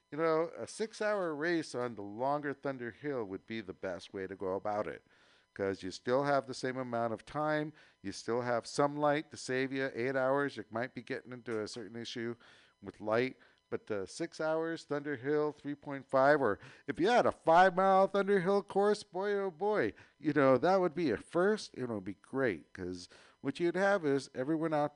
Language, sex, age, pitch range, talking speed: English, male, 50-69, 105-150 Hz, 210 wpm